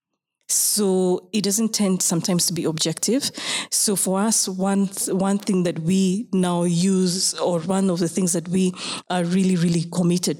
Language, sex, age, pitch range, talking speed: English, female, 20-39, 175-200 Hz, 165 wpm